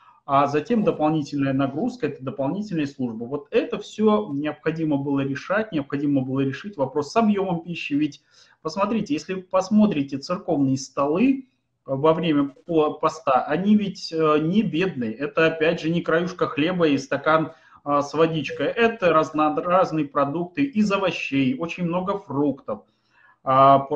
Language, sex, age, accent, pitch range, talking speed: Russian, male, 30-49, native, 140-185 Hz, 135 wpm